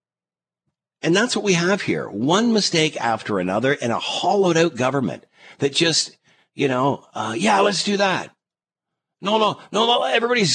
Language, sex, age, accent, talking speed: English, male, 50-69, American, 165 wpm